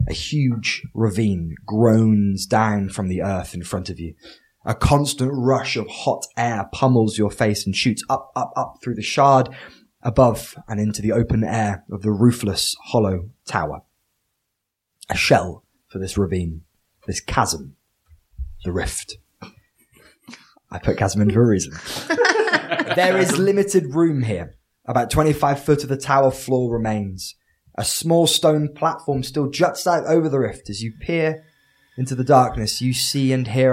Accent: British